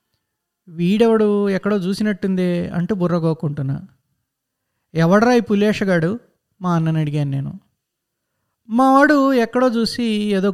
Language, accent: Telugu, native